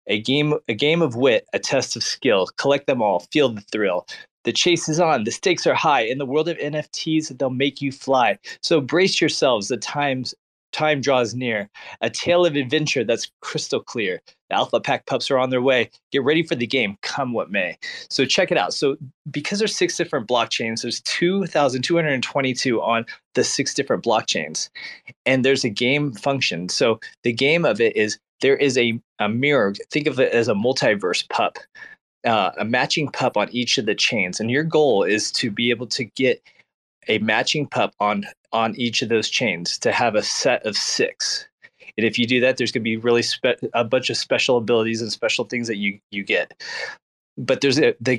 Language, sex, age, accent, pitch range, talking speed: English, male, 20-39, American, 120-160 Hz, 205 wpm